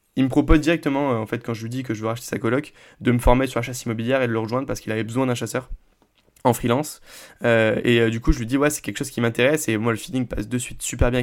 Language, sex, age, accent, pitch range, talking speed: French, male, 20-39, French, 115-150 Hz, 310 wpm